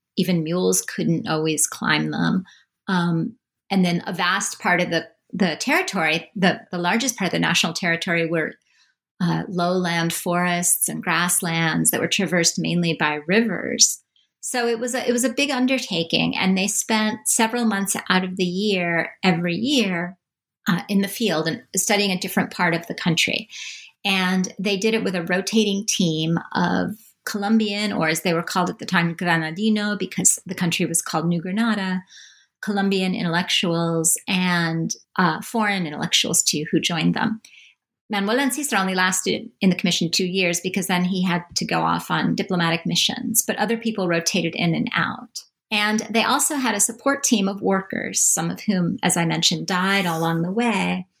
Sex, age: female, 40-59